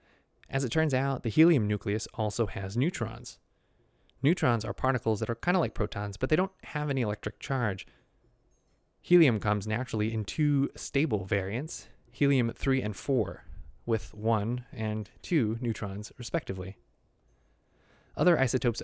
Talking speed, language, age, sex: 145 wpm, English, 20-39, male